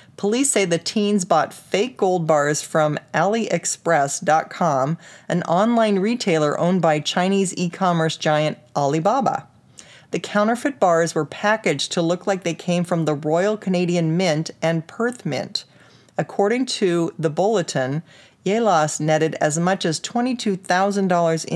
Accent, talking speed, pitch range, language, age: American, 130 wpm, 155-200 Hz, English, 40-59